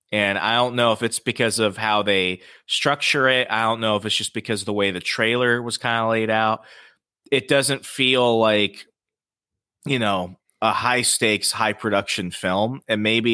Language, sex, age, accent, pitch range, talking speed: English, male, 30-49, American, 100-125 Hz, 195 wpm